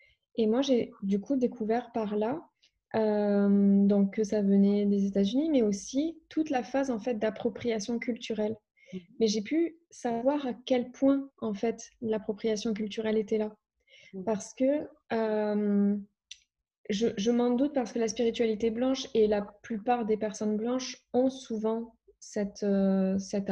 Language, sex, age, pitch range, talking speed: French, female, 20-39, 210-250 Hz, 155 wpm